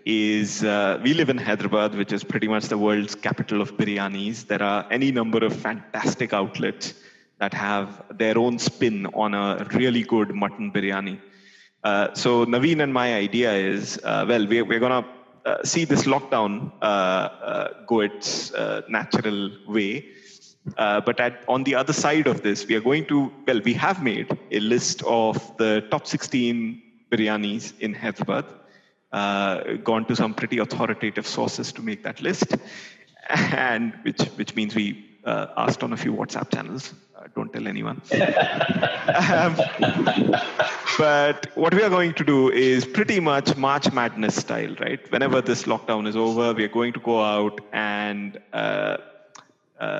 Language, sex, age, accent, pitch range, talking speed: English, male, 30-49, Indian, 105-130 Hz, 165 wpm